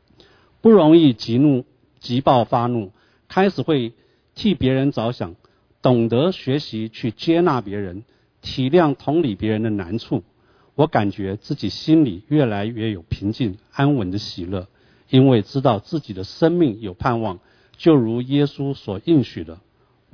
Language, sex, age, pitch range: Chinese, male, 50-69, 110-145 Hz